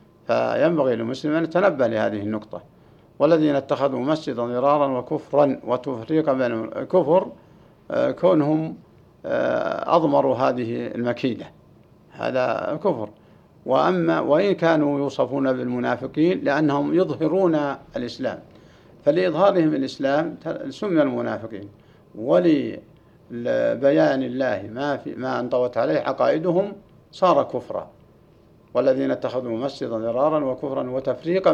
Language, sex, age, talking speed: Arabic, male, 60-79, 90 wpm